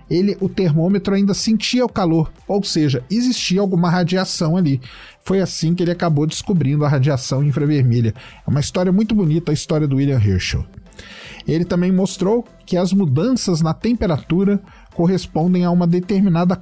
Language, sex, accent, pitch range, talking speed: Portuguese, male, Brazilian, 145-190 Hz, 160 wpm